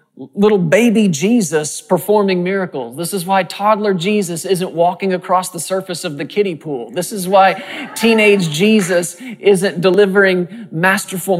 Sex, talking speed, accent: male, 140 wpm, American